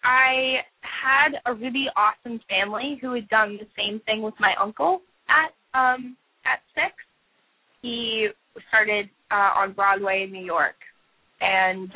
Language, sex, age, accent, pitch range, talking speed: English, female, 10-29, American, 210-270 Hz, 140 wpm